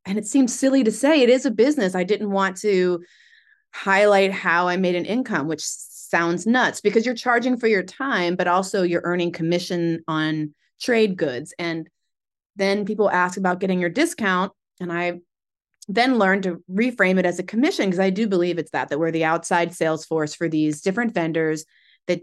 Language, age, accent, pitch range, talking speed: English, 30-49, American, 160-195 Hz, 195 wpm